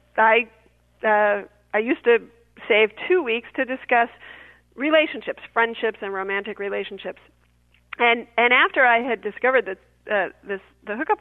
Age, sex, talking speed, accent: 40-59, female, 140 wpm, American